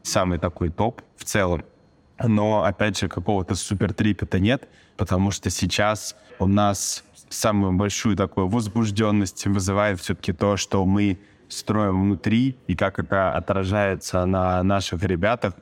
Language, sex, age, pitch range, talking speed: Russian, male, 20-39, 95-110 Hz, 130 wpm